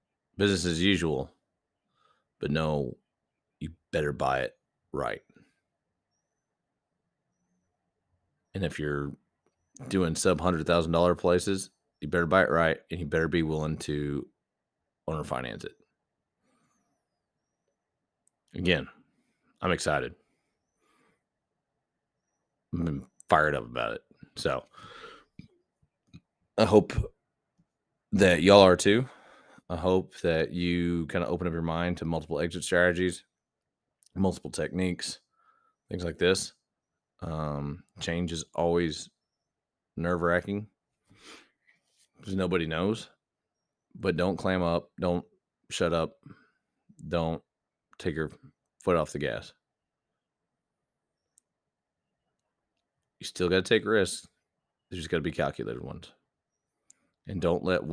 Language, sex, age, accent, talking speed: English, male, 30-49, American, 105 wpm